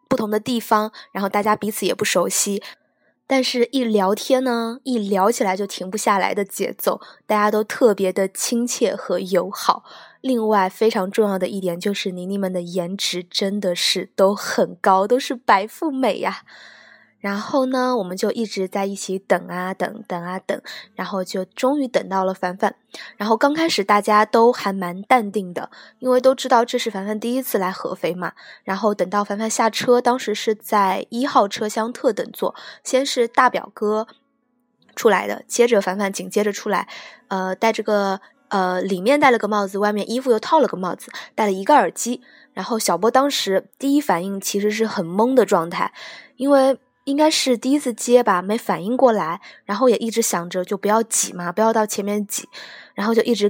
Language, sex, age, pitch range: Chinese, female, 20-39, 195-245 Hz